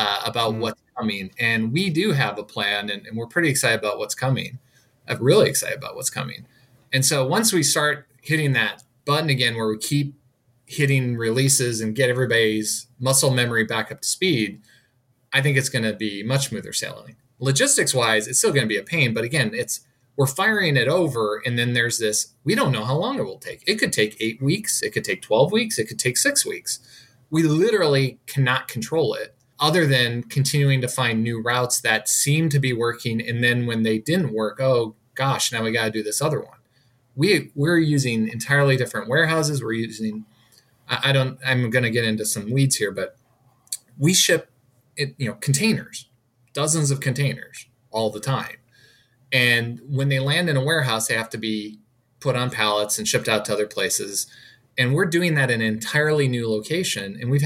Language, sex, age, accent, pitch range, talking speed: English, male, 20-39, American, 115-140 Hz, 200 wpm